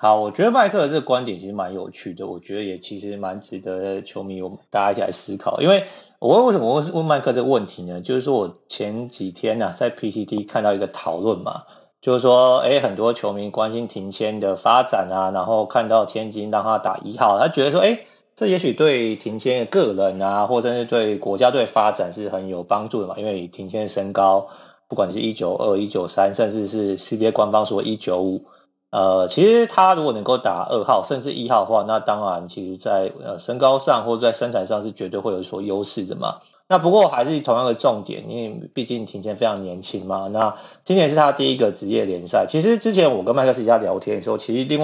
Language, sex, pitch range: Chinese, male, 100-130 Hz